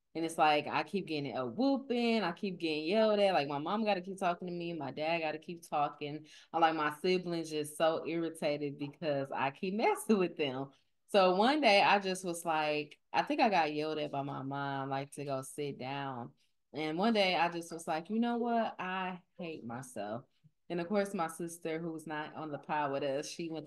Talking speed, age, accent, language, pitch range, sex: 230 wpm, 20-39, American, English, 145-190 Hz, female